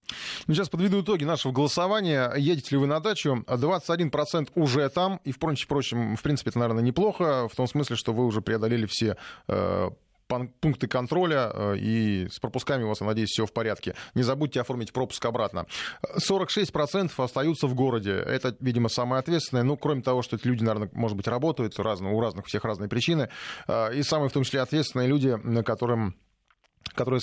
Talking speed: 175 wpm